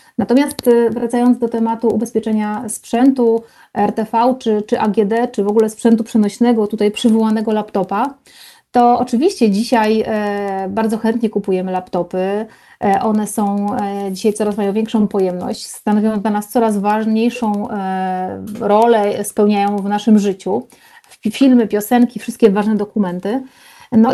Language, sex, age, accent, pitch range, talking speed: Polish, female, 30-49, native, 205-240 Hz, 120 wpm